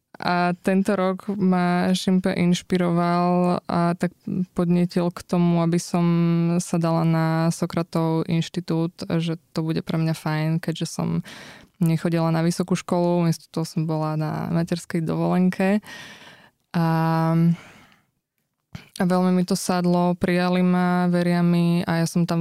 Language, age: Slovak, 20-39